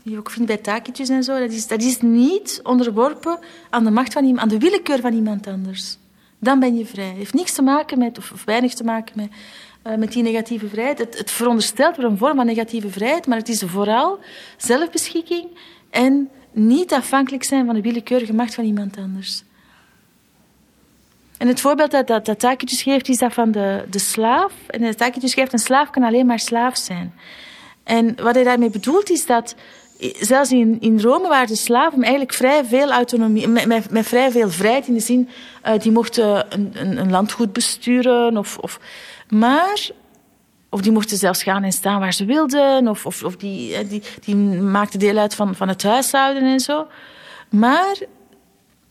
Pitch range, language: 215-265 Hz, Dutch